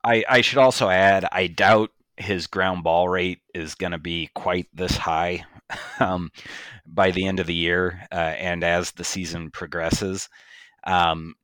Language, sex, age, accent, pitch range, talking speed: English, male, 30-49, American, 85-105 Hz, 170 wpm